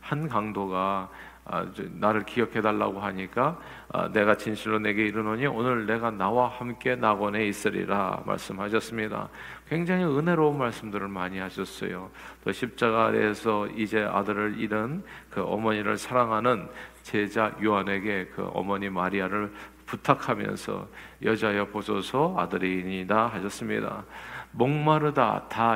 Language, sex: Korean, male